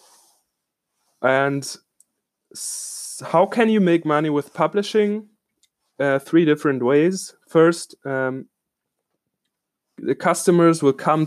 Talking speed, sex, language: 100 wpm, male, English